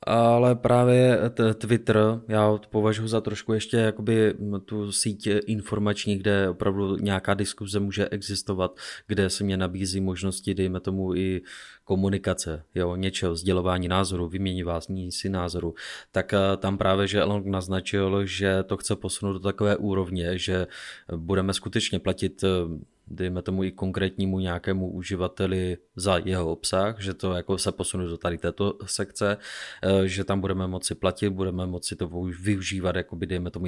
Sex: male